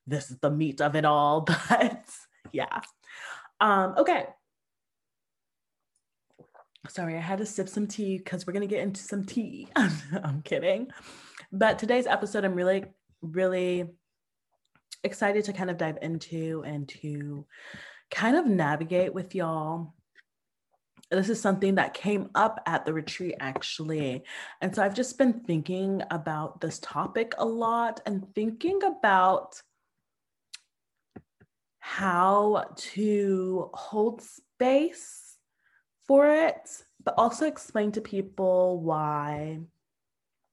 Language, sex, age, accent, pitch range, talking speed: English, female, 20-39, American, 160-215 Hz, 125 wpm